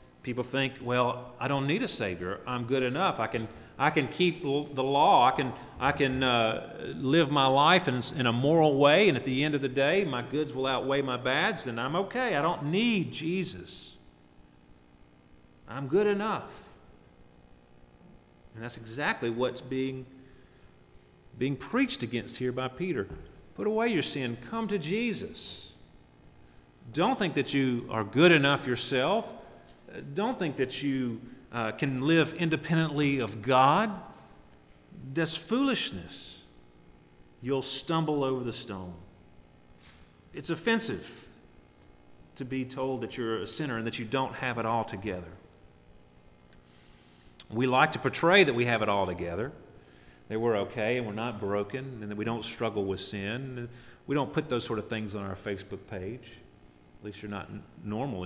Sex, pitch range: male, 85-140 Hz